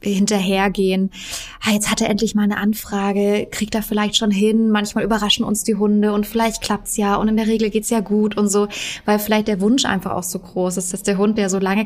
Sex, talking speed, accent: female, 250 wpm, German